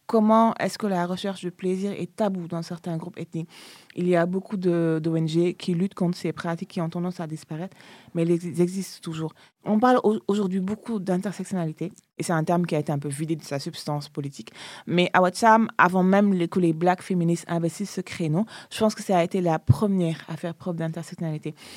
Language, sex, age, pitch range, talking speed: French, female, 20-39, 160-185 Hz, 215 wpm